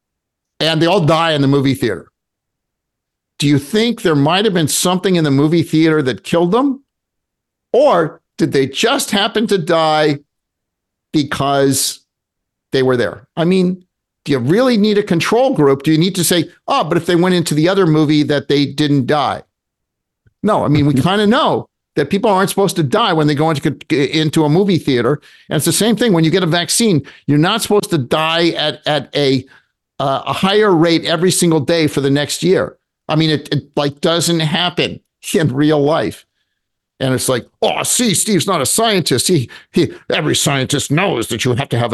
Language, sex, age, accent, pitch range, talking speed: English, male, 50-69, American, 125-170 Hz, 200 wpm